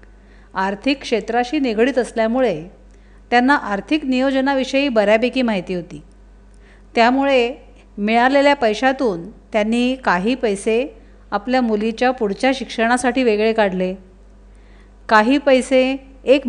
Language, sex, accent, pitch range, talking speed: Marathi, female, native, 210-270 Hz, 90 wpm